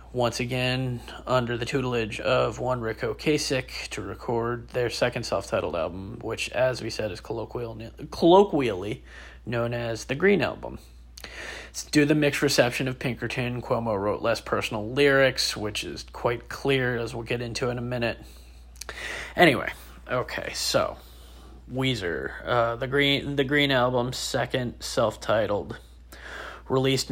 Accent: American